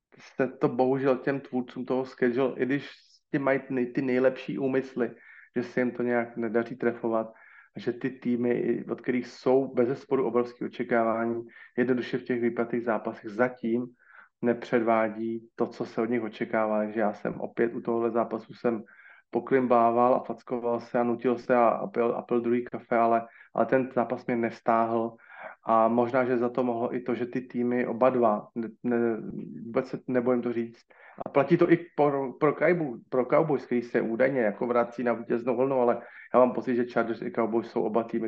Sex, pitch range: male, 115-125 Hz